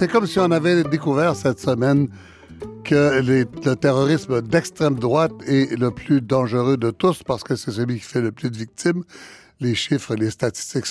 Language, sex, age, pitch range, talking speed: French, male, 60-79, 115-145 Hz, 180 wpm